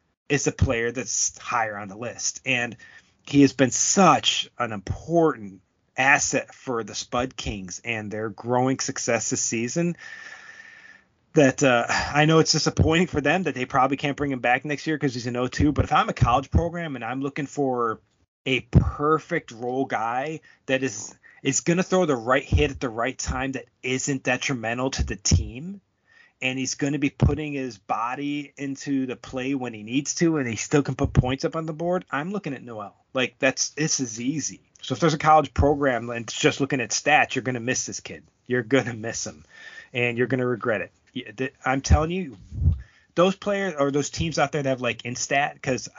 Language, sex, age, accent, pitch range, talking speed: English, male, 30-49, American, 115-145 Hz, 205 wpm